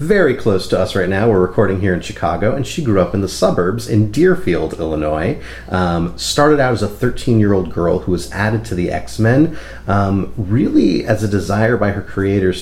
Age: 30-49